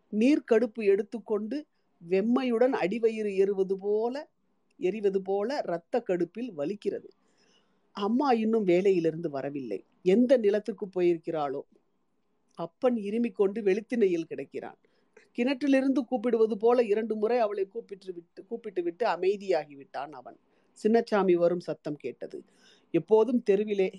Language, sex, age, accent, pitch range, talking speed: Tamil, female, 40-59, native, 170-235 Hz, 105 wpm